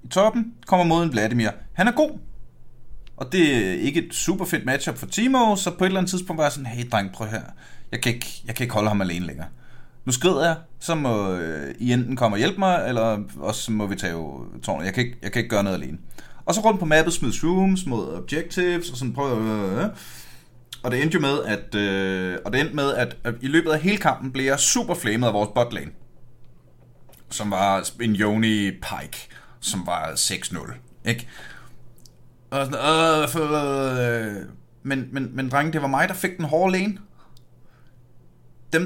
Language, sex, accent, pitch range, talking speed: Danish, male, native, 115-165 Hz, 205 wpm